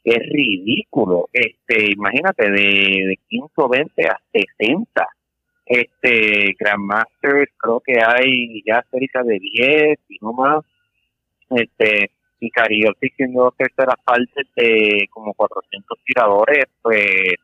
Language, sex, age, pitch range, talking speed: Spanish, male, 30-49, 100-125 Hz, 120 wpm